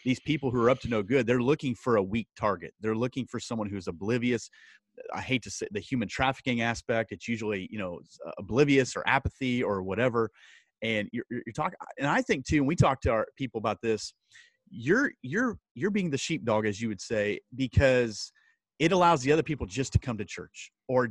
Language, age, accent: English, 30-49, American